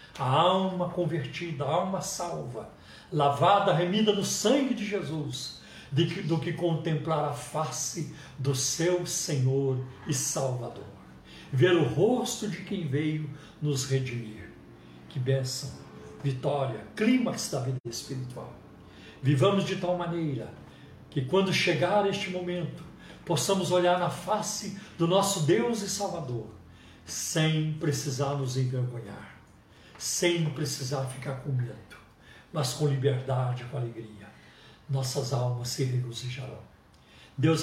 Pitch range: 130-170 Hz